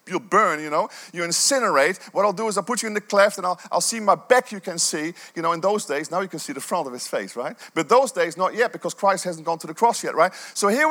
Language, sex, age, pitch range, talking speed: English, male, 40-59, 185-245 Hz, 310 wpm